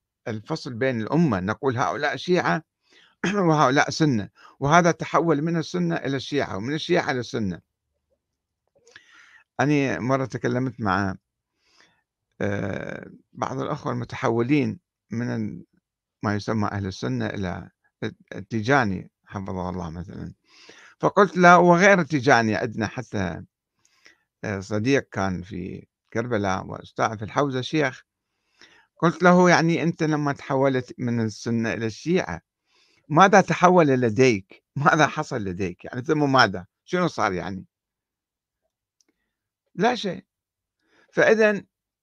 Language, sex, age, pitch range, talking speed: Arabic, male, 60-79, 110-160 Hz, 105 wpm